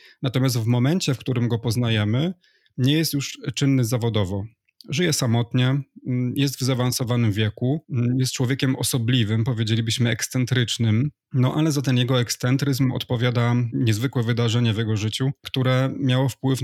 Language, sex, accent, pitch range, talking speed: Polish, male, native, 115-135 Hz, 135 wpm